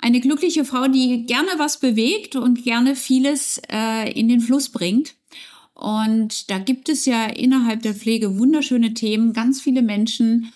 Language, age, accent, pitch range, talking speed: German, 50-69, German, 225-275 Hz, 160 wpm